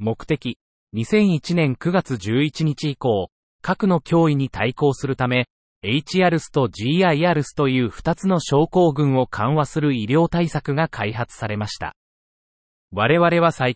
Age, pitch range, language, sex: 30-49, 120-170 Hz, Japanese, male